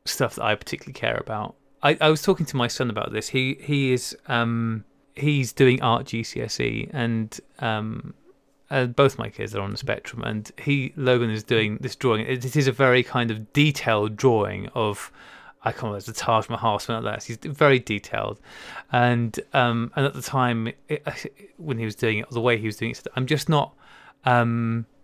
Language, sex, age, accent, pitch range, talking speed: English, male, 20-39, British, 115-145 Hz, 200 wpm